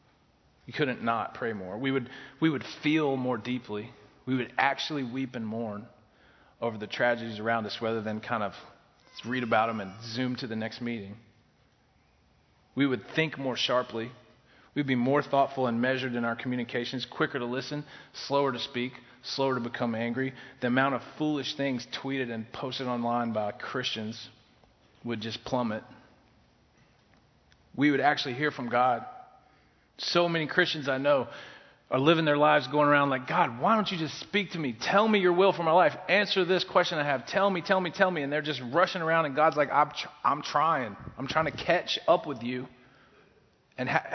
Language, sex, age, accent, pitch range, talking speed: English, male, 30-49, American, 120-150 Hz, 190 wpm